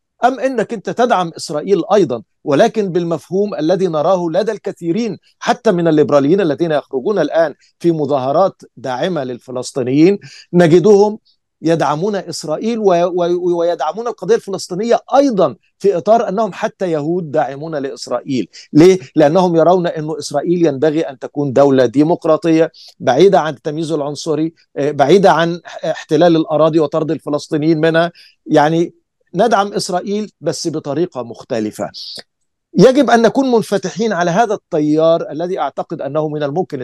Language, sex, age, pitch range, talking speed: Arabic, male, 50-69, 150-190 Hz, 120 wpm